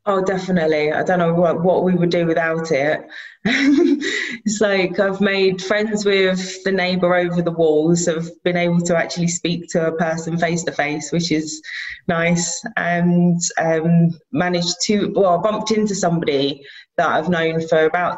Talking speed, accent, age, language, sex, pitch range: 170 wpm, British, 20-39, English, female, 160-190 Hz